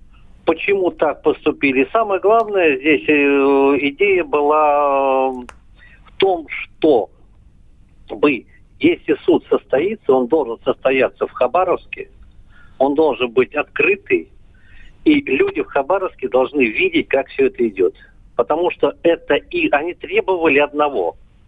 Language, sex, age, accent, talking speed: Russian, male, 50-69, native, 115 wpm